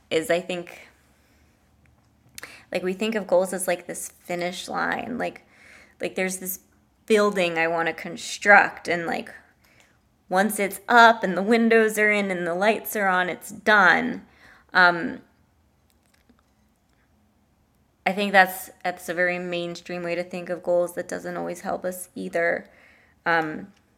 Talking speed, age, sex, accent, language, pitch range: 150 wpm, 20-39, female, American, English, 175-210 Hz